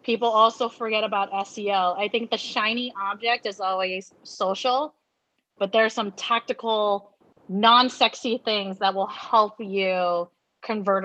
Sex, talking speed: female, 140 wpm